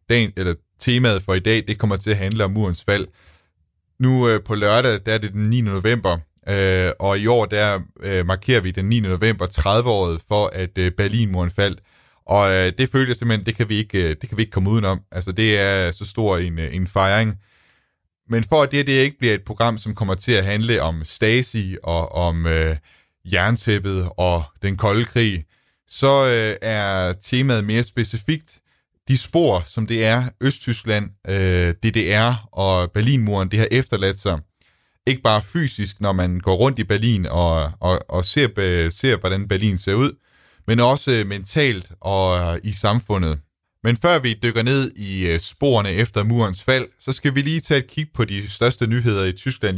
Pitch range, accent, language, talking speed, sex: 95-120 Hz, native, Danish, 185 wpm, male